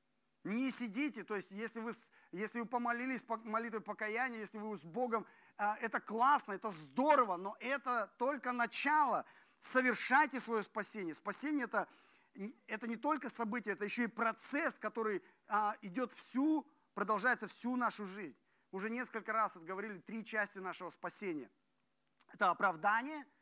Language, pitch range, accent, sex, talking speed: Russian, 215-275 Hz, native, male, 135 wpm